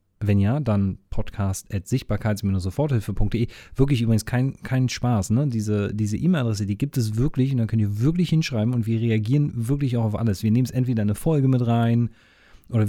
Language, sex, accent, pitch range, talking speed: German, male, German, 105-135 Hz, 190 wpm